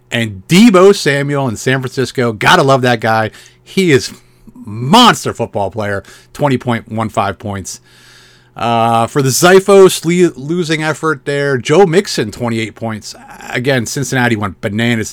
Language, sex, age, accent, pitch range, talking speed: English, male, 30-49, American, 105-135 Hz, 130 wpm